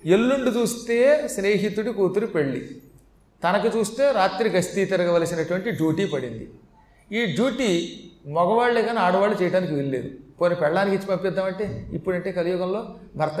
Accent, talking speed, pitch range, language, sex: native, 120 wpm, 155-215 Hz, Telugu, male